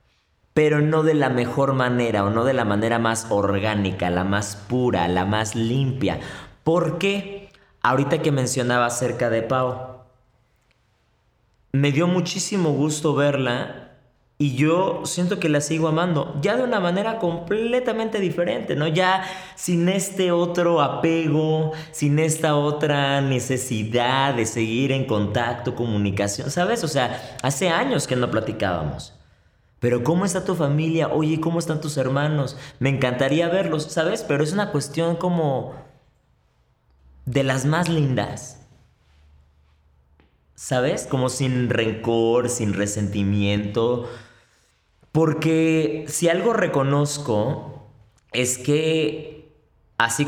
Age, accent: 30-49, Mexican